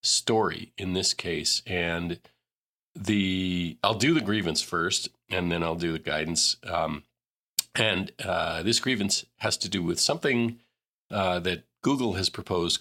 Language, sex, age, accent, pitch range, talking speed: English, male, 40-59, American, 85-110 Hz, 150 wpm